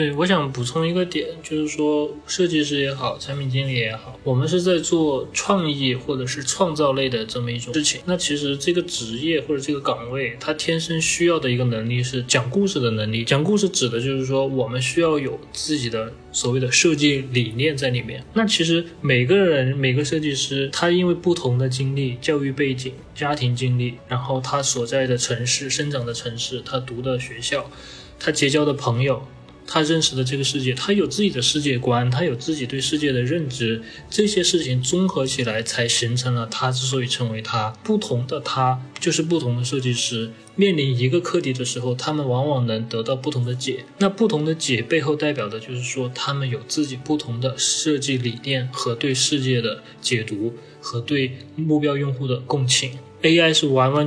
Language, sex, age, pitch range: Chinese, male, 20-39, 125-150 Hz